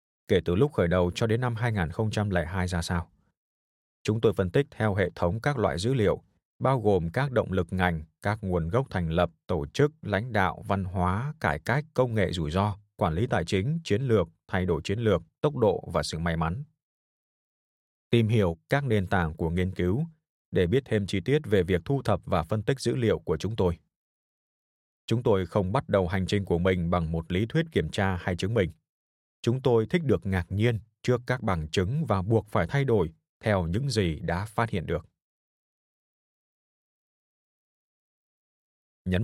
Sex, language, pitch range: male, Vietnamese, 90-120 Hz